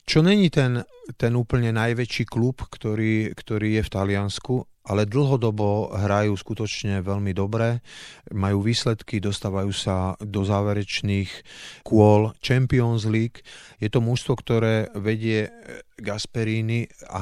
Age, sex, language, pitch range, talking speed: 30-49, male, Slovak, 100-115 Hz, 120 wpm